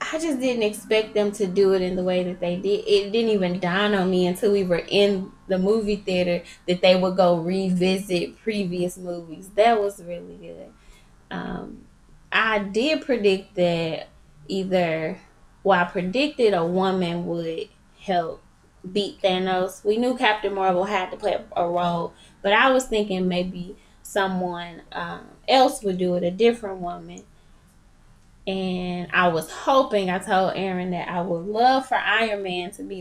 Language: English